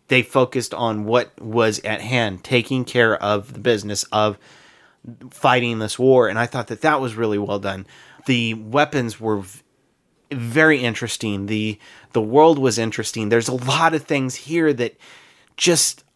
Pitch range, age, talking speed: 110-140 Hz, 30-49, 160 wpm